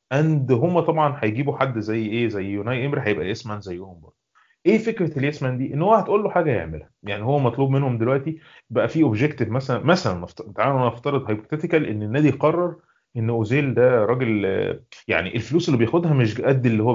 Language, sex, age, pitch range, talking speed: Arabic, male, 30-49, 115-160 Hz, 185 wpm